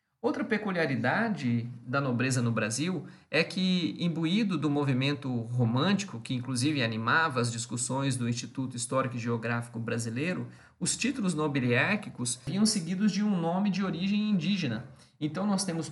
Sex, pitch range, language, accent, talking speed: male, 125-160 Hz, Portuguese, Brazilian, 140 wpm